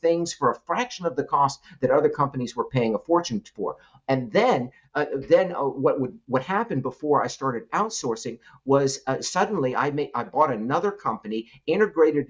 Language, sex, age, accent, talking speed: English, male, 50-69, American, 185 wpm